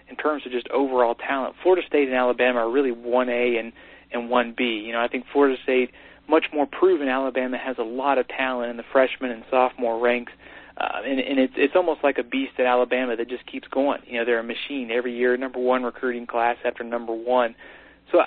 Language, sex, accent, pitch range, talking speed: English, male, American, 120-140 Hz, 225 wpm